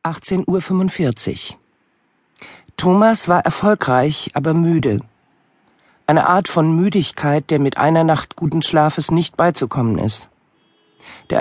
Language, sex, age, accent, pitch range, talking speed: German, male, 50-69, German, 125-165 Hz, 110 wpm